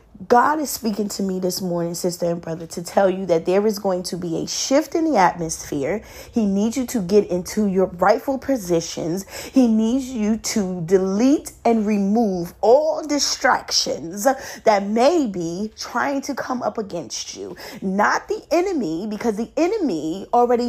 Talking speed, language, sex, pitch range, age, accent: 170 wpm, English, female, 195-260 Hz, 30-49, American